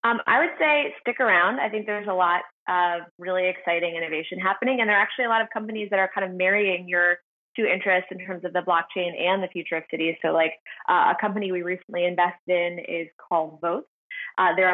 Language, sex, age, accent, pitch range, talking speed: English, female, 20-39, American, 175-205 Hz, 230 wpm